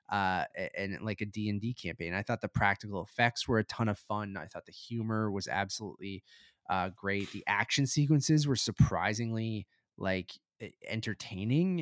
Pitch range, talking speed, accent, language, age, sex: 95-120 Hz, 155 wpm, American, English, 20-39, male